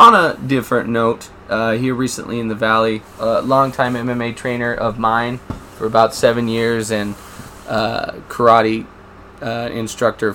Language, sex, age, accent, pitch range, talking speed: English, male, 20-39, American, 105-115 Hz, 145 wpm